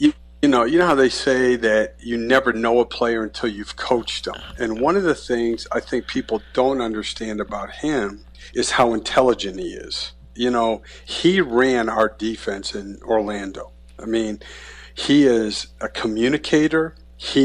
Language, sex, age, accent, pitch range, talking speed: English, male, 50-69, American, 105-130 Hz, 170 wpm